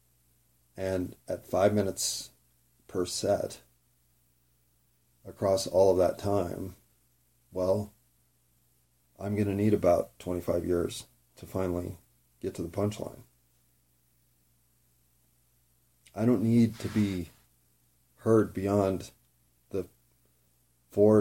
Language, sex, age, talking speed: English, male, 40-59, 95 wpm